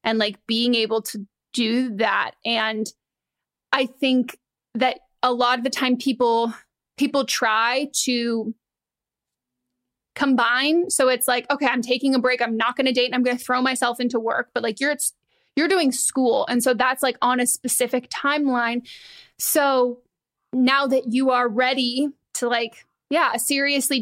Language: English